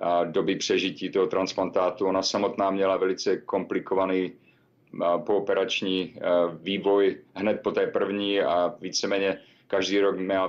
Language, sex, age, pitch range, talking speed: Czech, male, 40-59, 95-120 Hz, 115 wpm